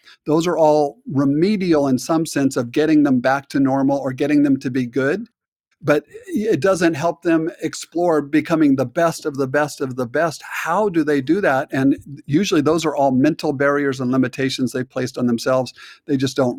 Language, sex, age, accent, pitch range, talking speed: English, male, 50-69, American, 130-160 Hz, 200 wpm